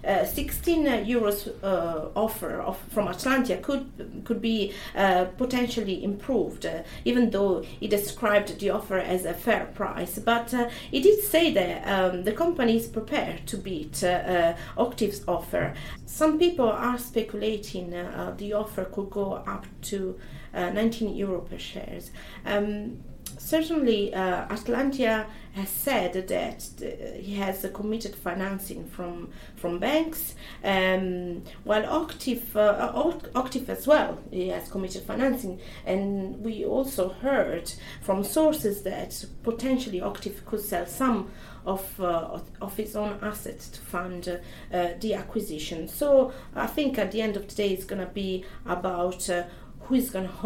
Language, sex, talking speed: English, female, 150 wpm